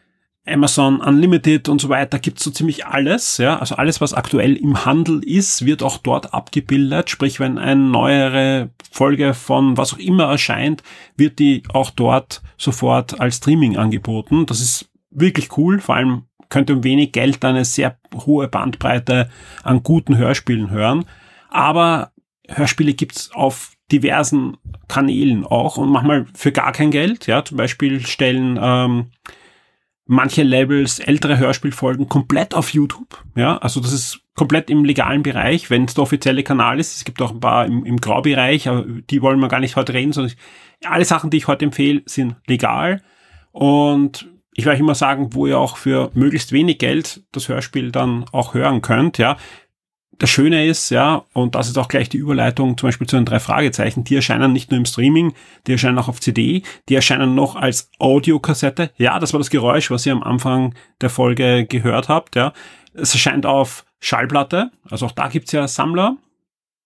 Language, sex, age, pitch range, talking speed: German, male, 30-49, 125-150 Hz, 180 wpm